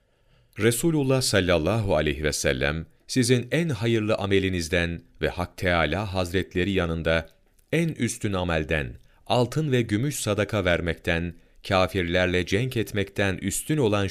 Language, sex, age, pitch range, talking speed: Turkish, male, 40-59, 80-115 Hz, 115 wpm